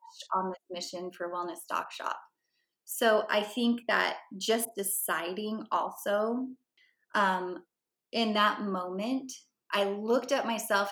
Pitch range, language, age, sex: 190-235 Hz, English, 20-39, female